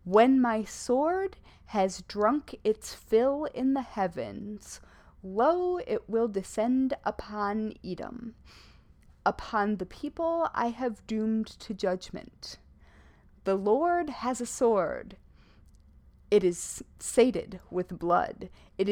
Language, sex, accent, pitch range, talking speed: English, female, American, 185-240 Hz, 110 wpm